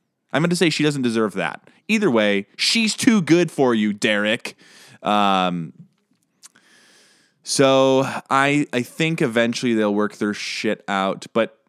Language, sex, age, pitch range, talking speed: English, male, 20-39, 105-165 Hz, 140 wpm